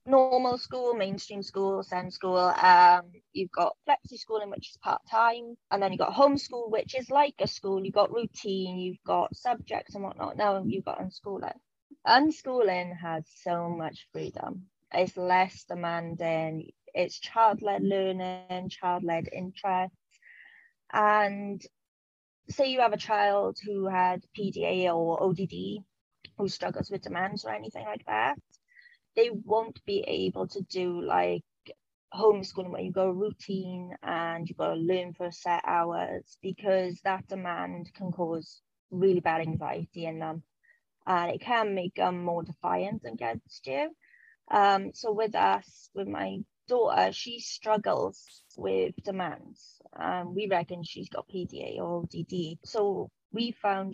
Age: 20-39